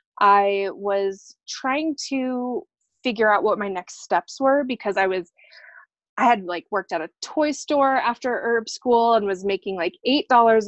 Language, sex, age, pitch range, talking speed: English, female, 20-39, 195-240 Hz, 175 wpm